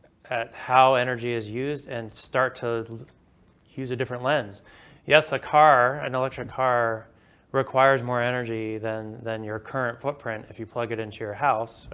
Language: English